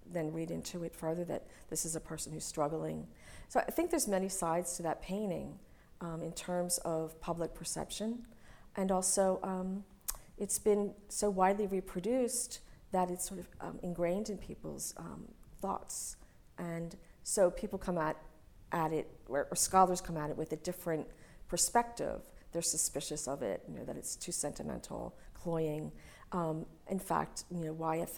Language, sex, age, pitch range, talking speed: English, female, 40-59, 160-190 Hz, 170 wpm